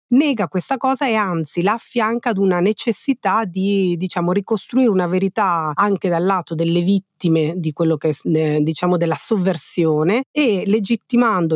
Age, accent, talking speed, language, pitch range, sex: 40-59, native, 150 wpm, Italian, 160-200 Hz, female